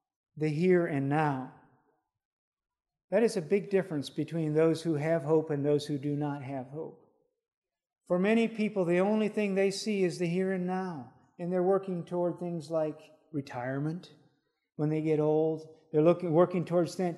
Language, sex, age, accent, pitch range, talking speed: English, male, 50-69, American, 145-175 Hz, 175 wpm